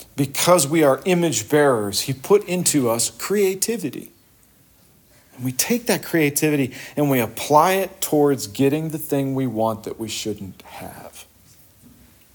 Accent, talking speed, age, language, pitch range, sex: American, 140 wpm, 40-59, English, 95-150 Hz, male